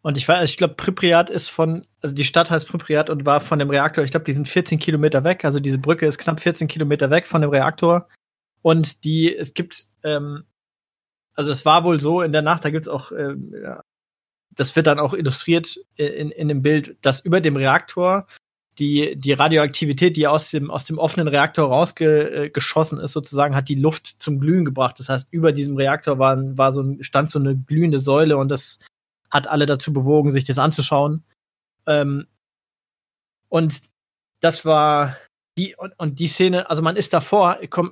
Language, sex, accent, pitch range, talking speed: German, male, German, 145-165 Hz, 195 wpm